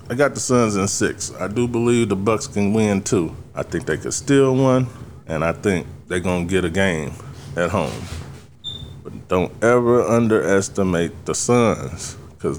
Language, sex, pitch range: English, male, 90-115 Hz